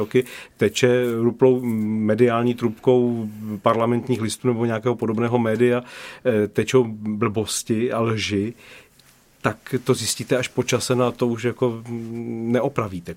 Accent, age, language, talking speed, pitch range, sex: native, 40-59, Czech, 120 wpm, 100-120 Hz, male